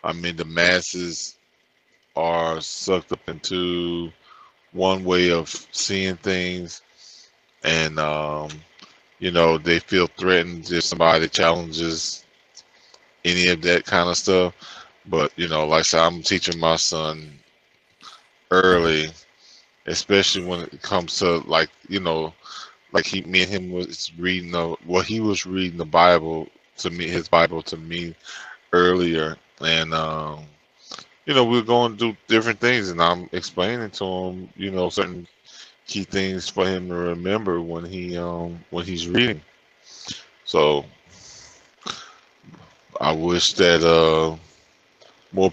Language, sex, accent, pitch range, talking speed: English, male, American, 85-95 Hz, 140 wpm